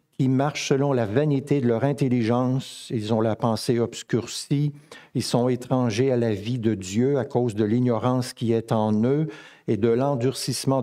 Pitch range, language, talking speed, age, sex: 120-165 Hz, French, 185 wpm, 60-79, male